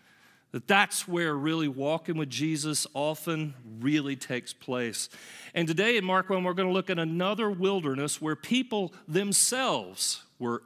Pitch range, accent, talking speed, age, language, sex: 125-180 Hz, American, 150 wpm, 40-59, English, male